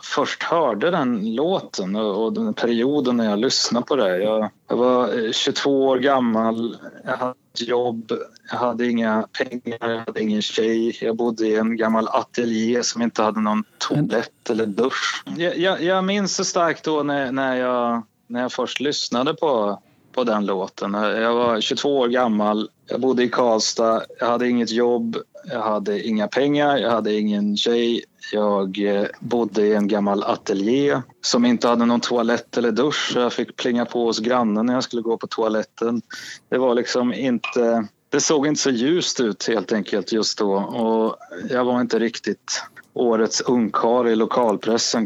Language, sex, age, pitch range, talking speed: Swedish, male, 30-49, 110-135 Hz, 170 wpm